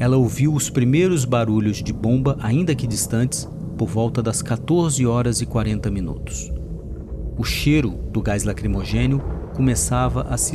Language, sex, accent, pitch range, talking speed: Portuguese, male, Brazilian, 75-120 Hz, 150 wpm